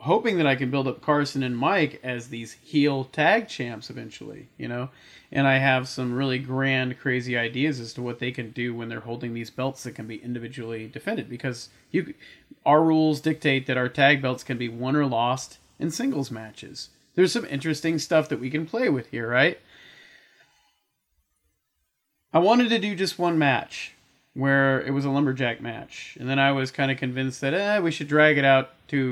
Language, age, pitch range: English, 30-49, 120-145 Hz